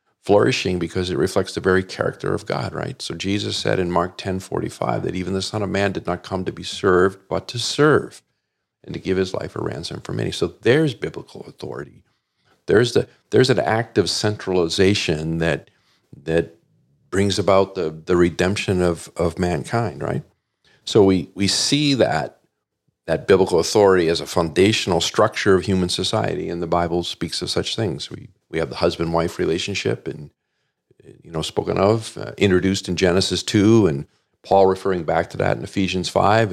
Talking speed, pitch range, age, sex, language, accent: 180 wpm, 85-100 Hz, 50-69, male, English, American